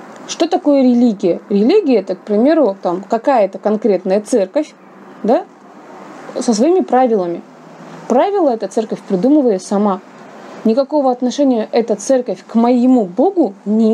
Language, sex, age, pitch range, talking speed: Russian, female, 20-39, 210-270 Hz, 115 wpm